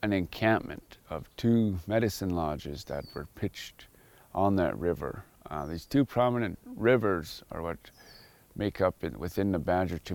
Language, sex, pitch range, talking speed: English, male, 85-105 Hz, 155 wpm